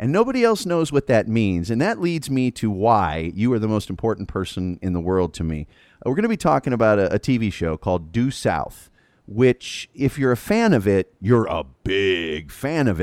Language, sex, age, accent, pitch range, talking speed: English, male, 30-49, American, 105-145 Hz, 225 wpm